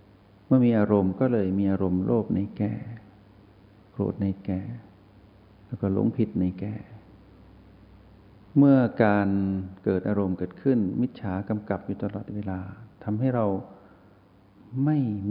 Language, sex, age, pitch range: Thai, male, 60-79, 100-115 Hz